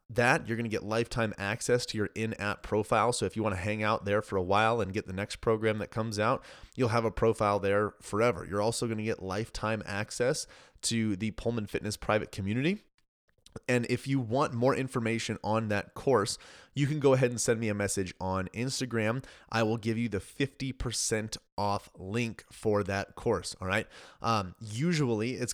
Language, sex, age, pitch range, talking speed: English, male, 30-49, 95-115 Hz, 200 wpm